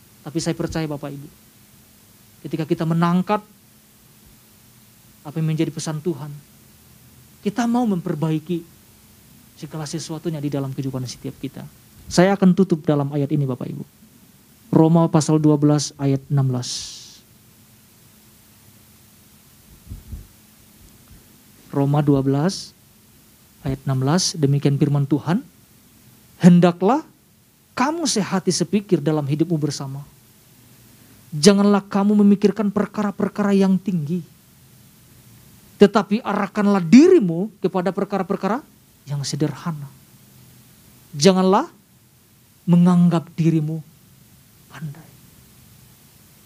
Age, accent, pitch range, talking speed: 40-59, native, 130-175 Hz, 85 wpm